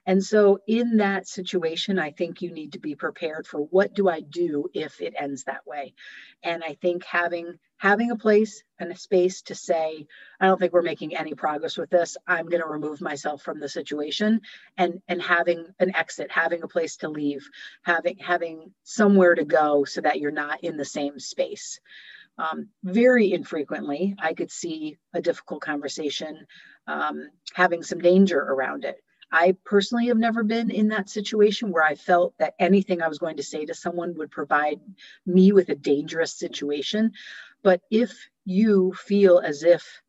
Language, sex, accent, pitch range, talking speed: English, female, American, 155-200 Hz, 185 wpm